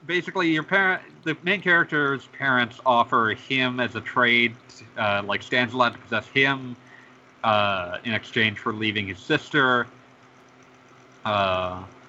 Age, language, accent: 30-49, English, American